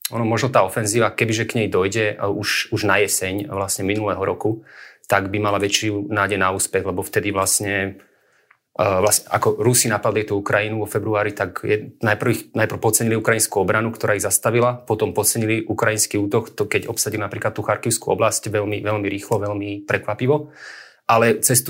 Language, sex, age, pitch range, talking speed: Slovak, male, 30-49, 100-115 Hz, 170 wpm